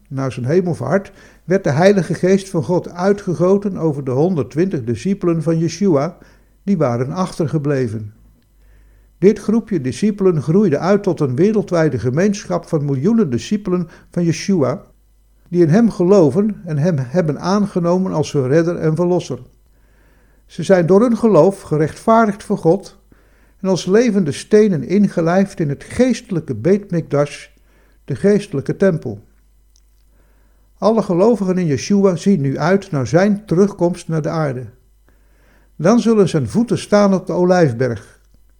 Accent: Dutch